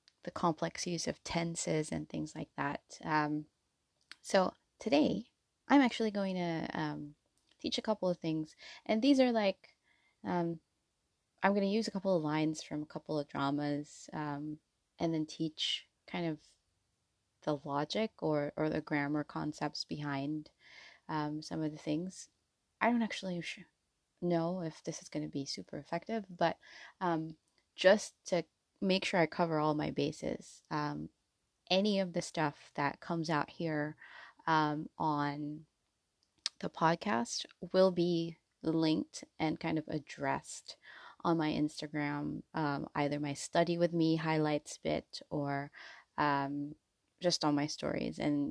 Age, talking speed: 20-39, 150 wpm